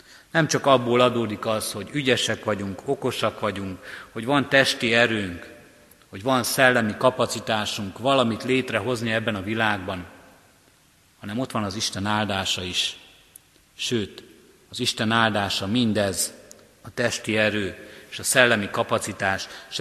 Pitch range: 105-125 Hz